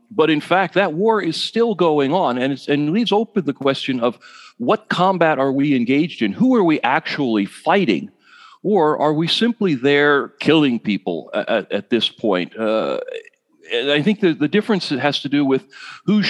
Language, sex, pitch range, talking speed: English, male, 115-170 Hz, 190 wpm